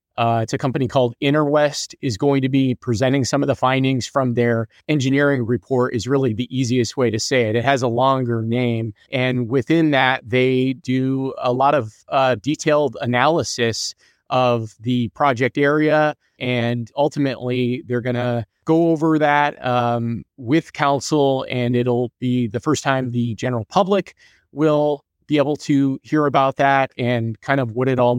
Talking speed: 170 wpm